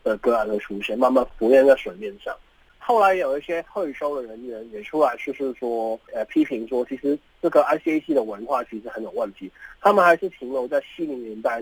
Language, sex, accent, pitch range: Chinese, male, native, 135-210 Hz